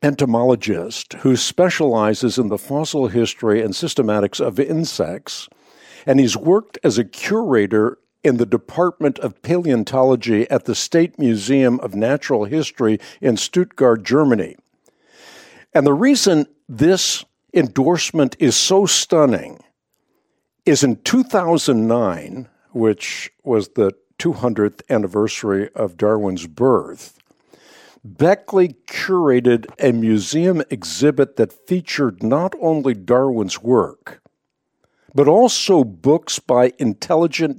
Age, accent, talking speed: 60-79, American, 105 wpm